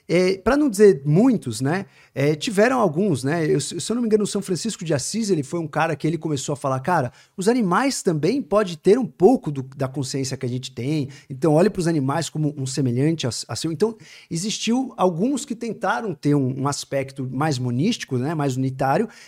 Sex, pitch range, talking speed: male, 145-230 Hz, 220 wpm